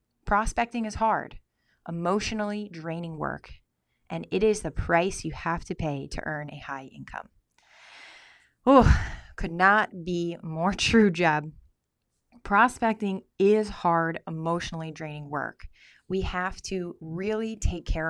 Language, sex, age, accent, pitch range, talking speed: English, female, 20-39, American, 160-190 Hz, 130 wpm